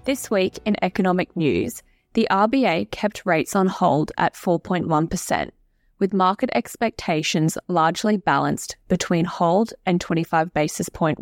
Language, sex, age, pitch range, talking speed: English, female, 10-29, 170-205 Hz, 130 wpm